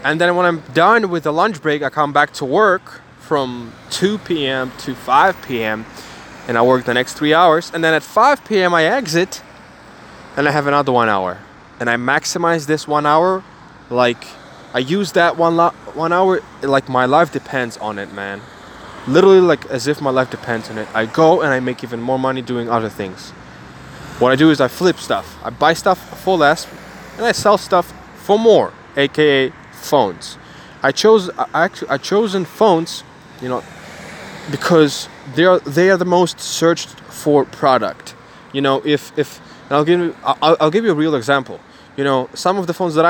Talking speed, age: 195 wpm, 10-29